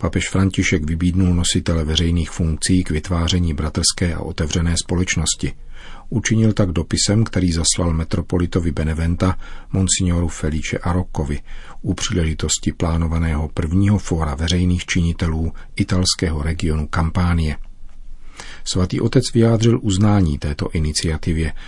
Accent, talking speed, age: native, 105 wpm, 40-59